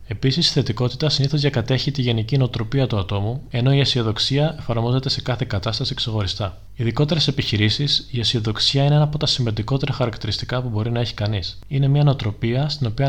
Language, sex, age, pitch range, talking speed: Greek, male, 20-39, 110-140 Hz, 175 wpm